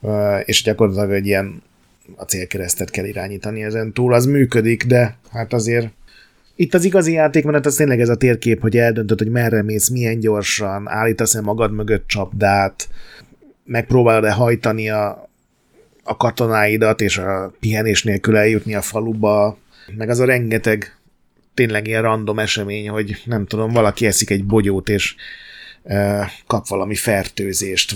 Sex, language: male, Hungarian